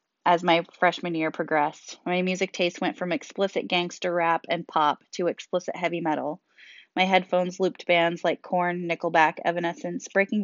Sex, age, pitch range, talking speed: female, 20-39, 155-185 Hz, 160 wpm